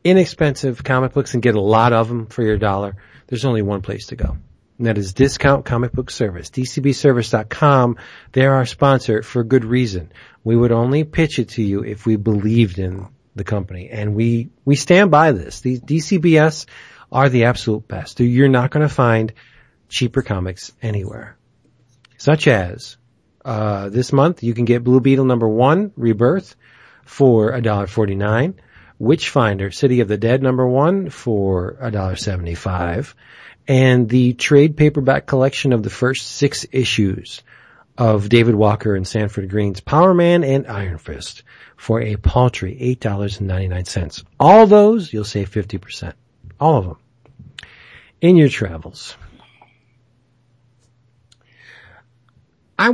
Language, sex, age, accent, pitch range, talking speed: English, male, 40-59, American, 105-135 Hz, 145 wpm